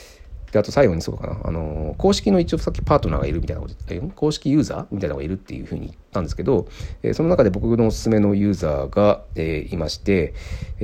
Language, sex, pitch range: Japanese, male, 80-105 Hz